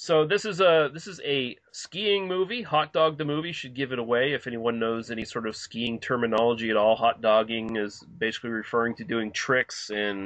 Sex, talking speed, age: male, 210 wpm, 30-49